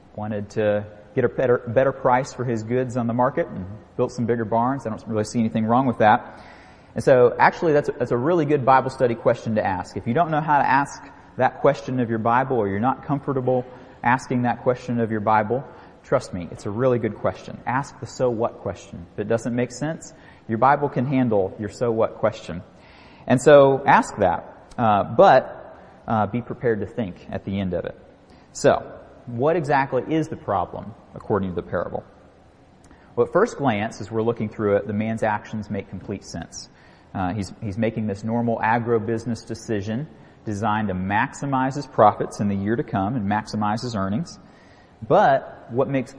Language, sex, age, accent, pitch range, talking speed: English, male, 30-49, American, 105-125 Hz, 200 wpm